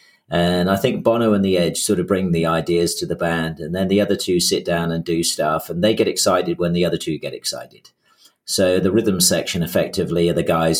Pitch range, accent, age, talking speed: 85-105 Hz, British, 40-59, 240 wpm